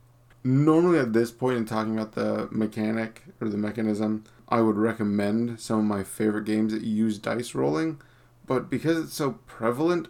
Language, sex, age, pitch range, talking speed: English, male, 30-49, 110-125 Hz, 170 wpm